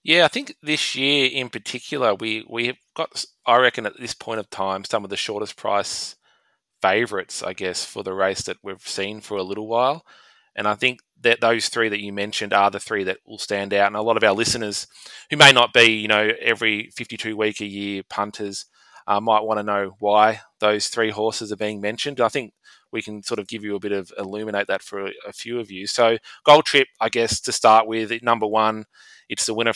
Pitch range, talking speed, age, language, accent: 100-120 Hz, 230 wpm, 20-39, English, Australian